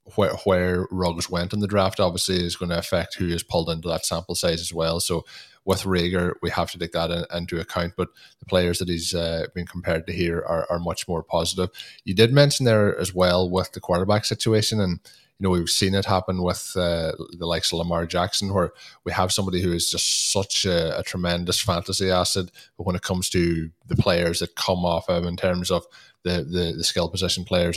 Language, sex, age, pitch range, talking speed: English, male, 20-39, 85-95 Hz, 225 wpm